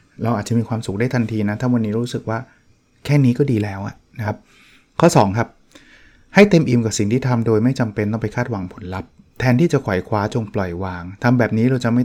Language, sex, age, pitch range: Thai, male, 20-39, 105-135 Hz